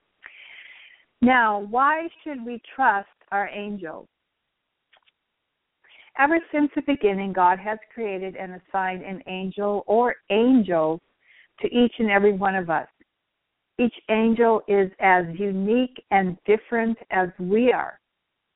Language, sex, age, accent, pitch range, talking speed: English, female, 60-79, American, 190-225 Hz, 120 wpm